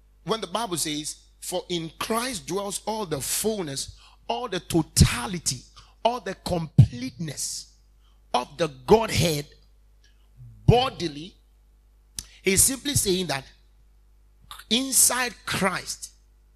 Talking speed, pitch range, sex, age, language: 100 wpm, 135-195 Hz, male, 50-69, English